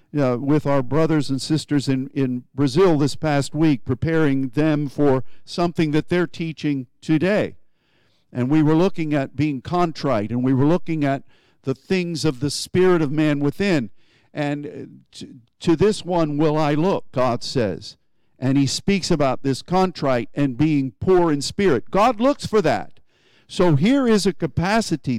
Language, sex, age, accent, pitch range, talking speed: English, male, 50-69, American, 140-190 Hz, 165 wpm